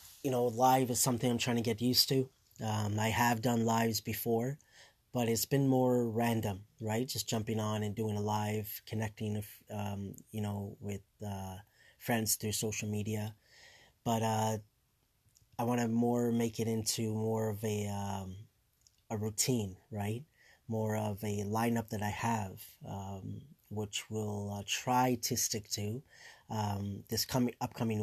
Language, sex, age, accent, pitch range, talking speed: English, male, 30-49, American, 105-120 Hz, 160 wpm